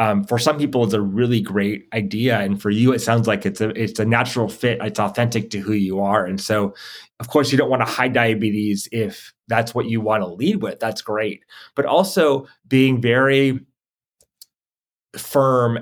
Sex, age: male, 30-49